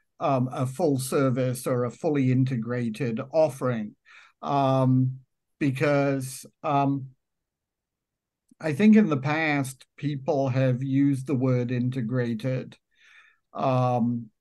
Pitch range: 130-145 Hz